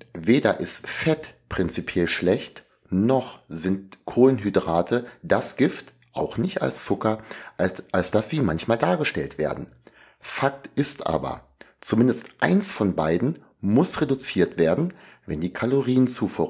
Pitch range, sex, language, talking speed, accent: 85-125 Hz, male, German, 125 wpm, German